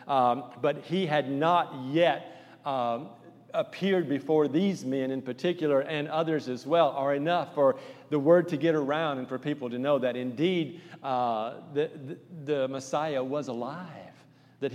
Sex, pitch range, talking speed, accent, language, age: male, 145-180 Hz, 165 wpm, American, English, 50-69